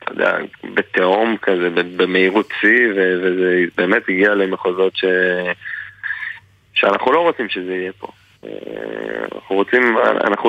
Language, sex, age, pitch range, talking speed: Hebrew, male, 20-39, 95-110 Hz, 115 wpm